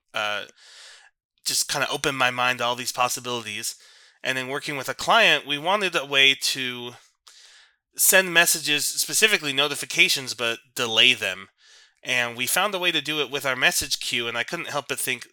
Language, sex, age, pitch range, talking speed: English, male, 20-39, 120-145 Hz, 185 wpm